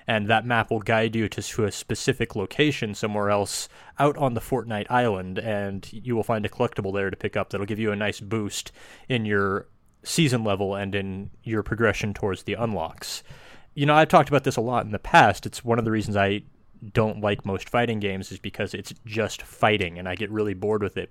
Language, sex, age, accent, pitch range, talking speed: English, male, 20-39, American, 105-130 Hz, 225 wpm